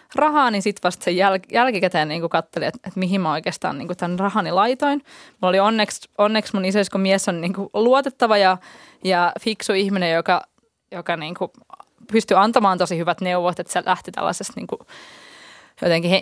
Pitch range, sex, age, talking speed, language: 175-220 Hz, female, 20-39, 170 wpm, Finnish